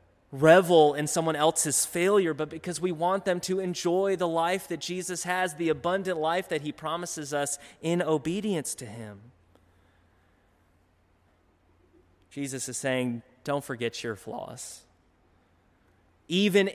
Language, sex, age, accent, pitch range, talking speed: English, male, 20-39, American, 100-165 Hz, 130 wpm